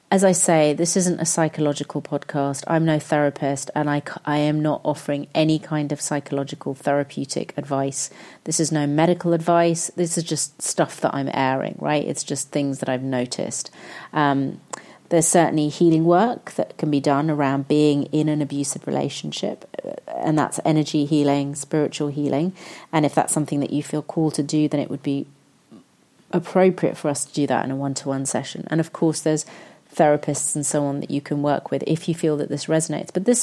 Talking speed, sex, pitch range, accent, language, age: 215 wpm, female, 145-170 Hz, British, English, 30-49